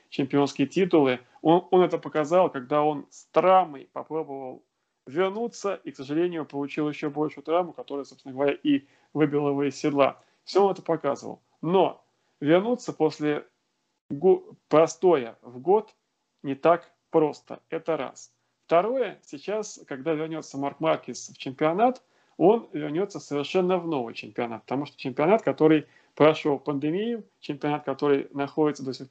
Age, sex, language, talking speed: 30-49, male, Russian, 140 wpm